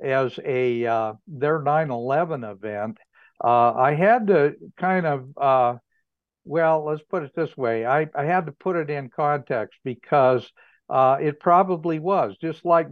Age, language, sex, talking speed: 60-79, English, male, 160 wpm